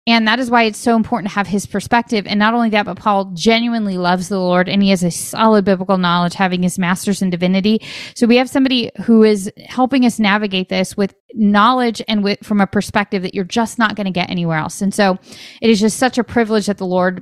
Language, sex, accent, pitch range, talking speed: English, female, American, 190-235 Hz, 245 wpm